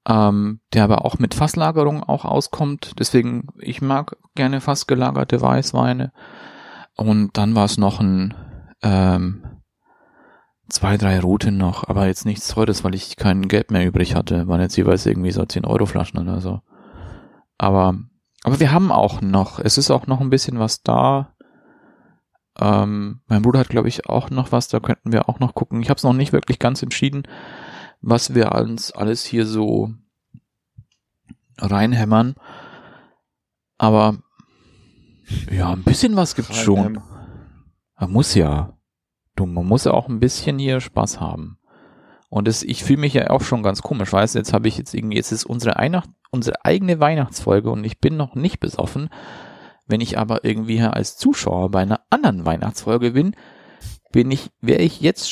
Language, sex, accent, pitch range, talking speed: German, male, German, 100-130 Hz, 170 wpm